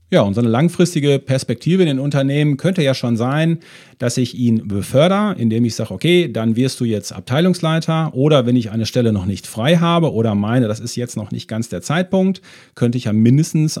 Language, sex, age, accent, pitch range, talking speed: German, male, 40-59, German, 115-155 Hz, 215 wpm